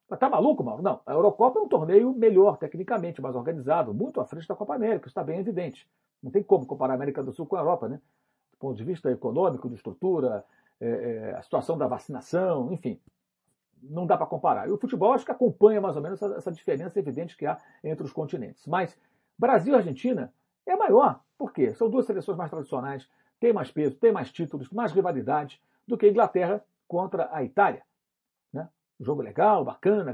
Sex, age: male, 50-69